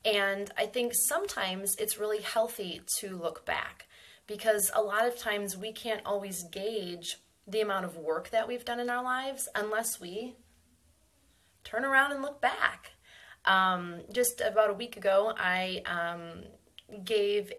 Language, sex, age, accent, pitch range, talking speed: English, female, 20-39, American, 185-240 Hz, 155 wpm